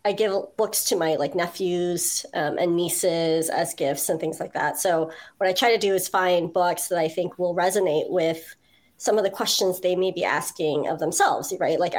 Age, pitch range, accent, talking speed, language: 30-49, 175-225 Hz, American, 215 wpm, English